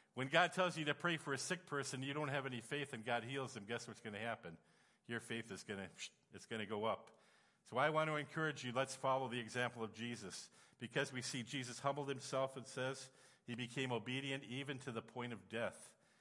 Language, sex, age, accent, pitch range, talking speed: English, male, 50-69, American, 120-145 Hz, 220 wpm